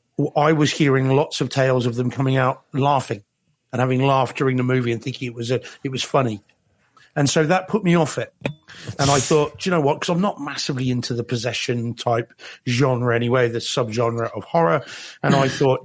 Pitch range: 125-150 Hz